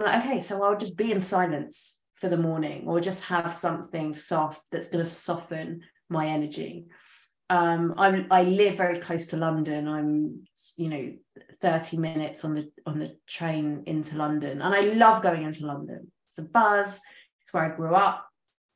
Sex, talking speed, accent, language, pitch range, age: female, 180 wpm, British, English, 150-185 Hz, 20-39